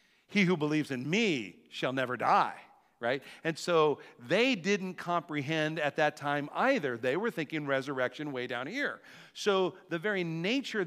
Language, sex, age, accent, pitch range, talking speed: English, male, 50-69, American, 145-210 Hz, 160 wpm